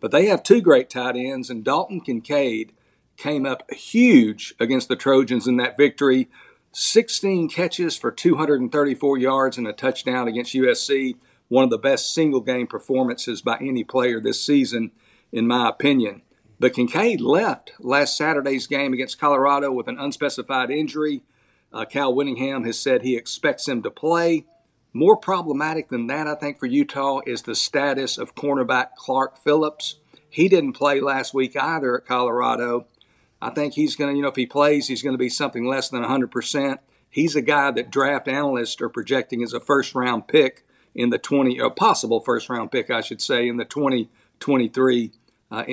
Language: English